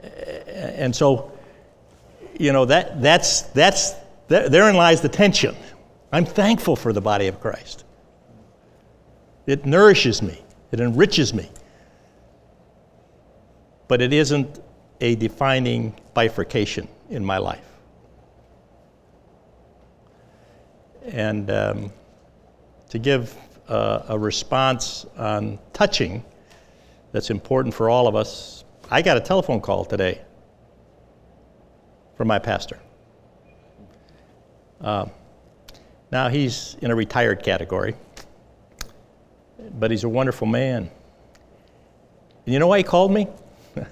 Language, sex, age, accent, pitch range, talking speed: English, male, 60-79, American, 110-140 Hz, 105 wpm